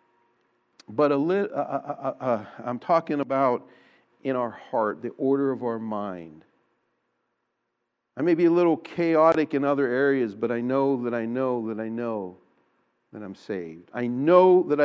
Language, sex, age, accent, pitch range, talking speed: English, male, 50-69, American, 120-170 Hz, 145 wpm